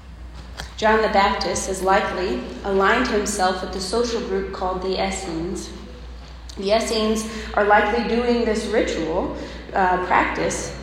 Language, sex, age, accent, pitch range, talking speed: English, female, 30-49, American, 165-205 Hz, 125 wpm